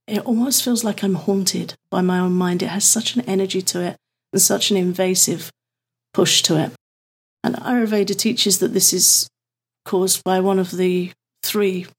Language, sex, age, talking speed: English, female, 40-59, 180 wpm